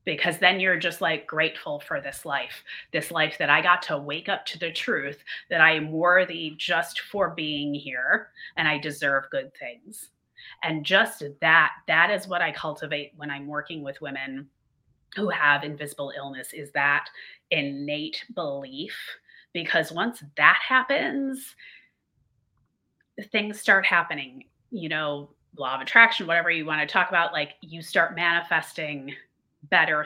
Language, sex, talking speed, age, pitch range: English, female, 150 wpm, 30-49, 145-190 Hz